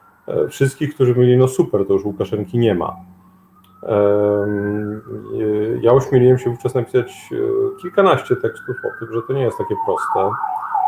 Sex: male